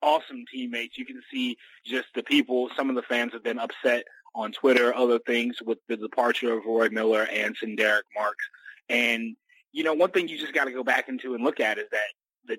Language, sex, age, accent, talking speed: English, male, 30-49, American, 220 wpm